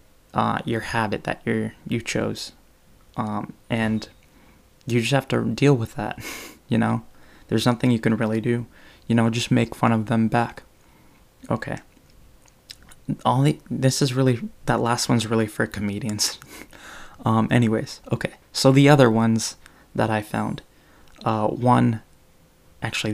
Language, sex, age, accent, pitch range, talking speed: English, male, 20-39, American, 110-120 Hz, 150 wpm